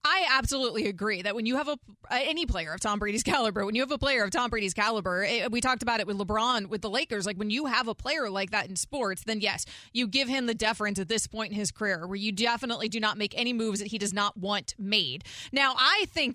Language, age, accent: English, 20-39, American